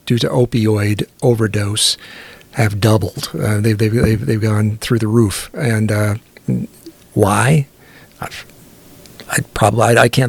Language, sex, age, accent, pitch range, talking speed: English, male, 50-69, American, 115-140 Hz, 140 wpm